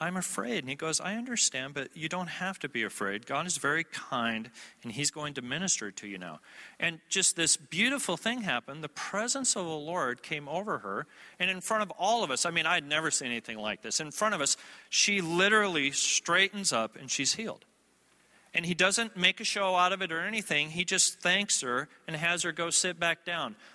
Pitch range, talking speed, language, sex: 130-190 Hz, 225 wpm, English, male